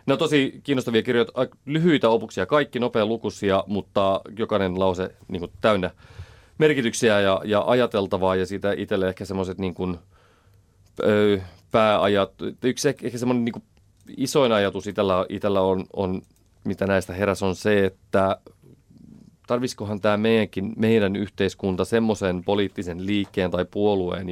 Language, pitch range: Finnish, 95-105 Hz